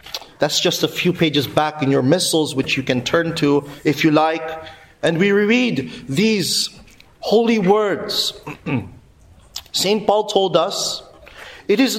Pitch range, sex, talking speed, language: 165-215 Hz, male, 145 wpm, English